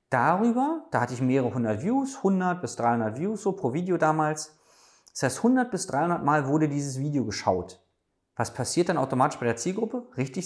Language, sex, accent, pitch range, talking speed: German, male, German, 115-170 Hz, 190 wpm